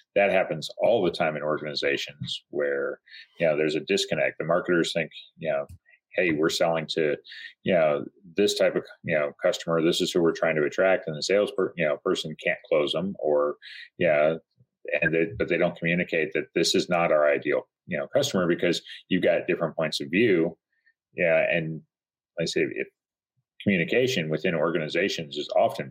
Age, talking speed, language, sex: 40-59, 190 wpm, English, male